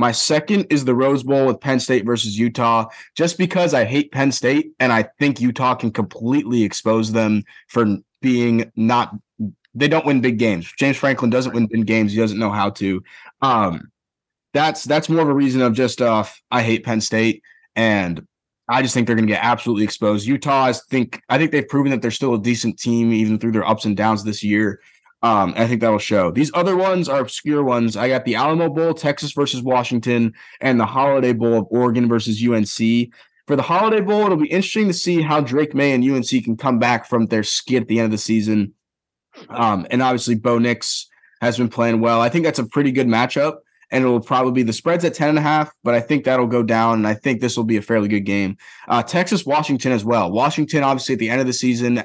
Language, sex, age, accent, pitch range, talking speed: English, male, 20-39, American, 115-140 Hz, 230 wpm